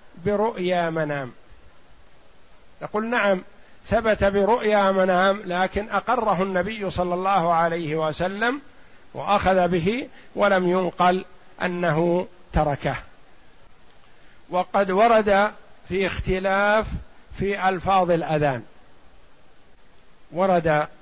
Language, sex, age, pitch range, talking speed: Arabic, male, 50-69, 170-200 Hz, 80 wpm